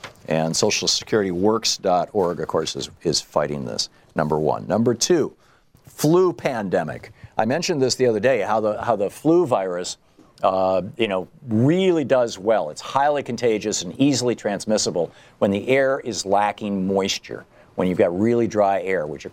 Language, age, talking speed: English, 50-69, 160 wpm